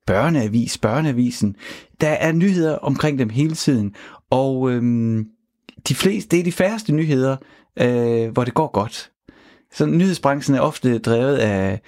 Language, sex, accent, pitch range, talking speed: Danish, male, native, 105-145 Hz, 145 wpm